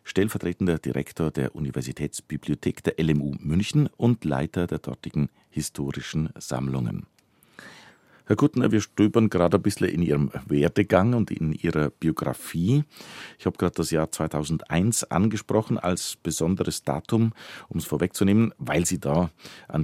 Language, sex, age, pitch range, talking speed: German, male, 40-59, 80-105 Hz, 135 wpm